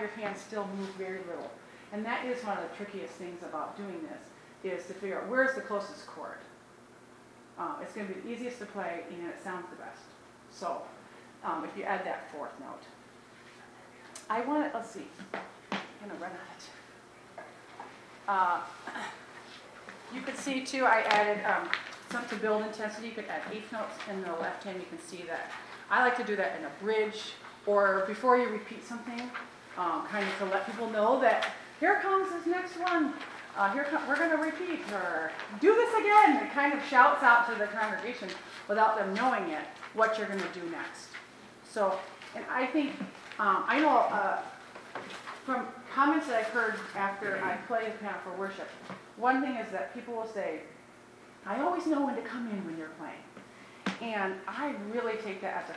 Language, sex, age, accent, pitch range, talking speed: English, female, 40-59, American, 195-255 Hz, 195 wpm